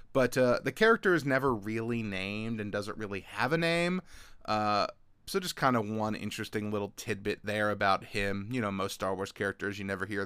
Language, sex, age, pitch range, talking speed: English, male, 30-49, 105-125 Hz, 205 wpm